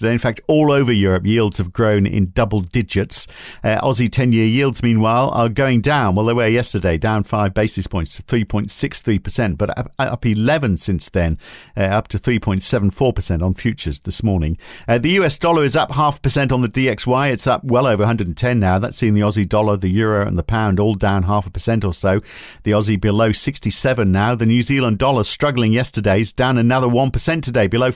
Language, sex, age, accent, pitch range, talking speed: English, male, 50-69, British, 105-130 Hz, 205 wpm